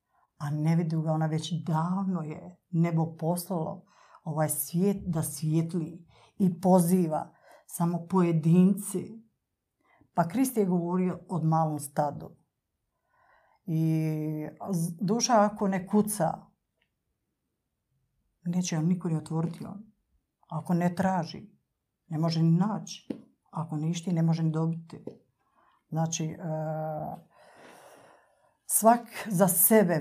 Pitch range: 160-190 Hz